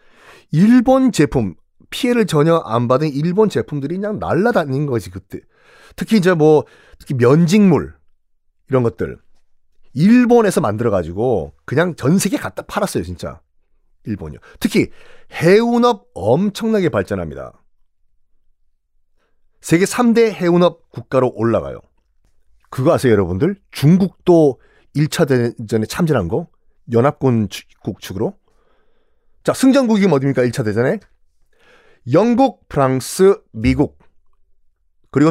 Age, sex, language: 40-59, male, Korean